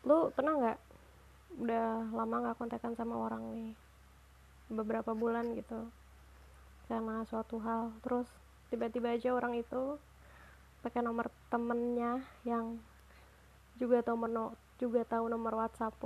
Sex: female